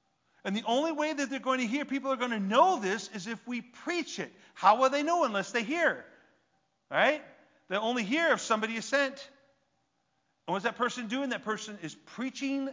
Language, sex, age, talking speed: English, male, 40-59, 205 wpm